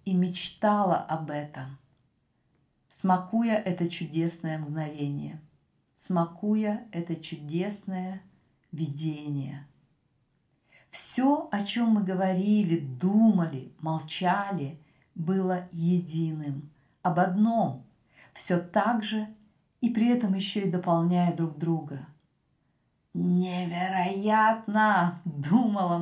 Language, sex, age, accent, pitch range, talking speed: Russian, female, 50-69, native, 160-210 Hz, 85 wpm